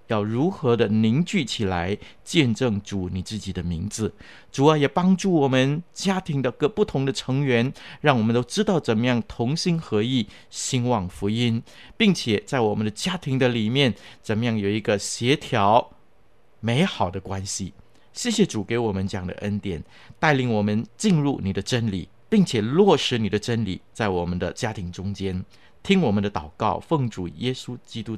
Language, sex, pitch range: Chinese, male, 100-140 Hz